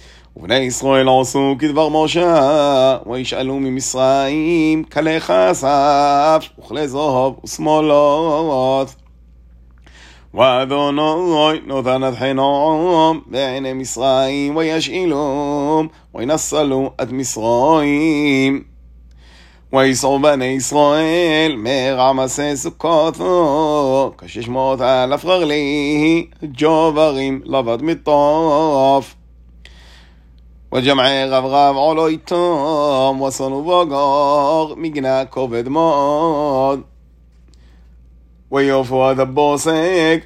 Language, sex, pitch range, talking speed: Hebrew, male, 130-155 Hz, 65 wpm